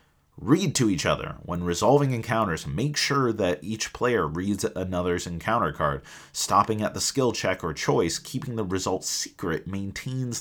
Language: English